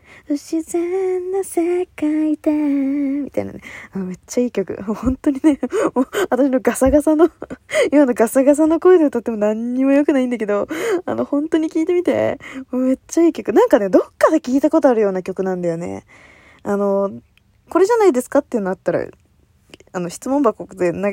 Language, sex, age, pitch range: Japanese, female, 20-39, 210-335 Hz